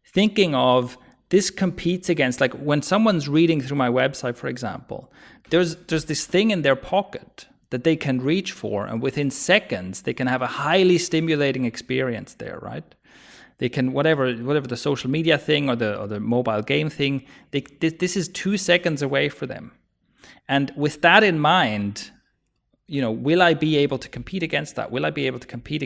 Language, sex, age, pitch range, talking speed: English, male, 30-49, 125-165 Hz, 190 wpm